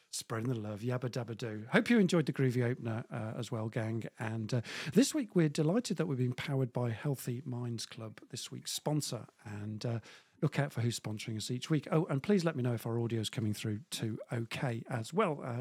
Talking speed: 225 wpm